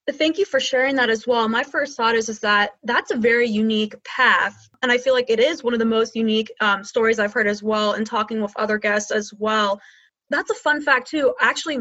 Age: 20-39